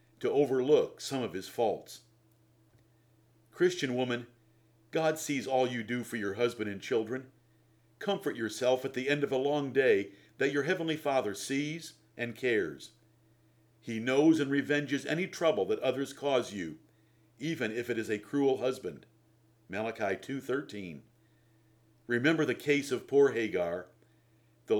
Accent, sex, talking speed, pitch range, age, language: American, male, 145 wpm, 110-135 Hz, 50-69, English